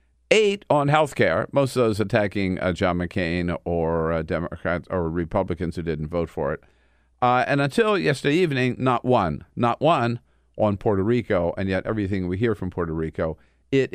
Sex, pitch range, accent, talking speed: male, 85-115 Hz, American, 180 wpm